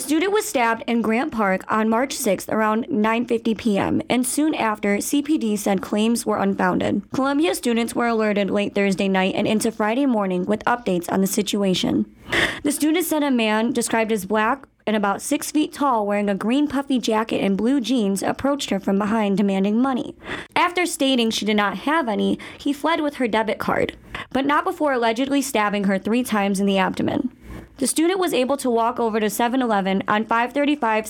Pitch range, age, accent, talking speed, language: 210-270 Hz, 20-39, American, 190 wpm, English